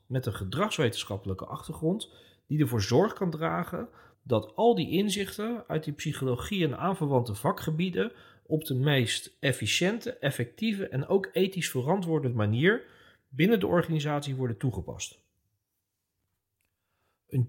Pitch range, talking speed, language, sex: 100-150 Hz, 120 wpm, Dutch, male